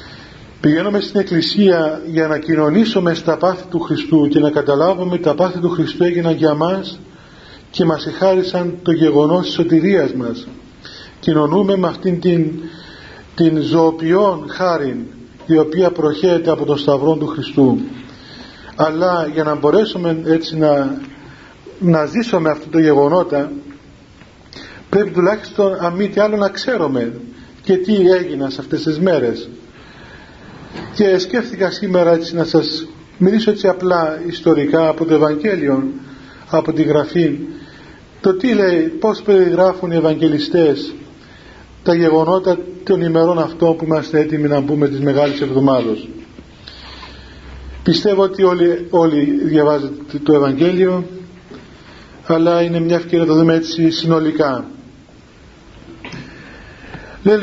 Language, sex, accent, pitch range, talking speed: Greek, male, native, 150-180 Hz, 125 wpm